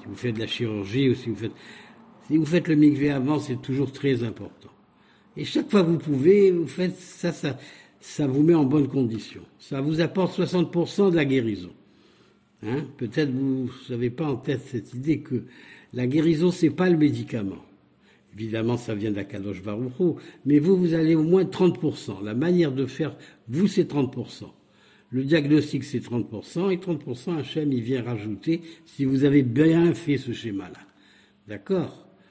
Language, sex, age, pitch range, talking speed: Hebrew, male, 60-79, 120-160 Hz, 175 wpm